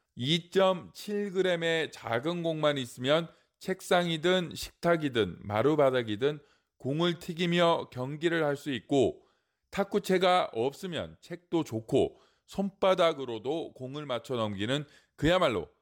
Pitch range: 135-175 Hz